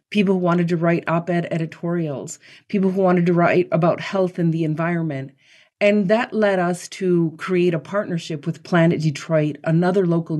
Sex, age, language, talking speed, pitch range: female, 40-59, English, 180 wpm, 165-200 Hz